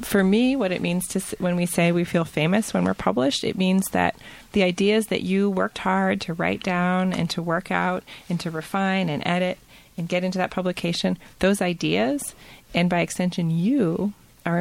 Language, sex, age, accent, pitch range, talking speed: English, female, 30-49, American, 165-195 Hz, 195 wpm